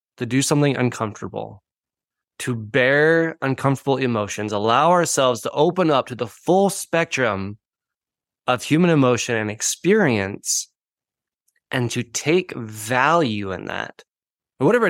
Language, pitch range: English, 120-160 Hz